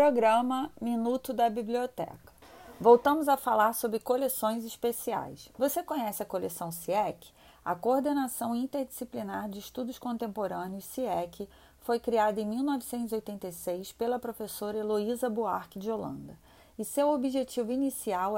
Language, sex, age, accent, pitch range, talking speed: Portuguese, female, 30-49, Brazilian, 210-255 Hz, 120 wpm